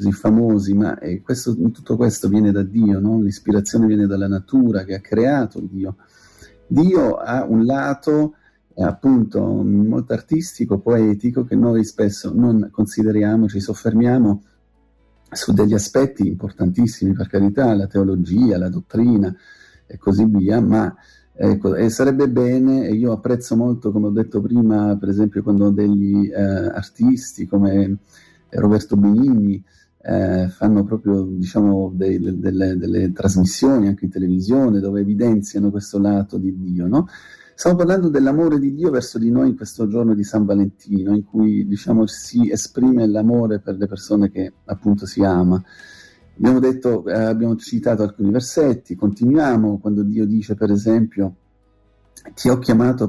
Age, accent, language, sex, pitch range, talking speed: 40-59, native, Italian, male, 100-115 Hz, 140 wpm